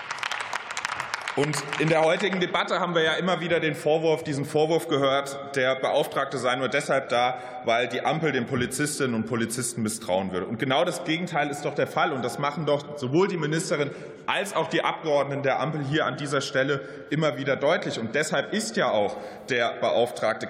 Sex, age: male, 30-49